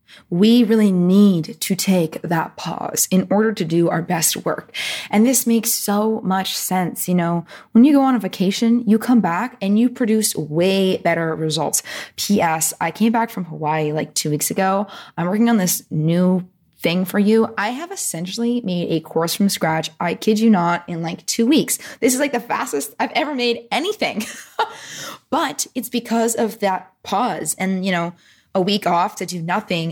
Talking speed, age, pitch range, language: 190 wpm, 20-39, 175-235 Hz, English